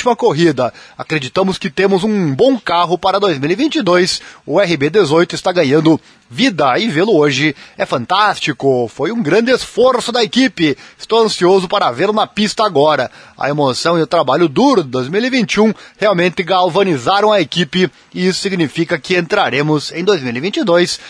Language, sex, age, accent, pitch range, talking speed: Portuguese, male, 20-39, Brazilian, 145-205 Hz, 145 wpm